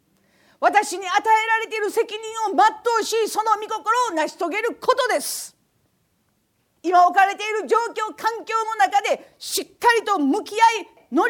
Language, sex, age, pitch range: Japanese, female, 40-59, 340-445 Hz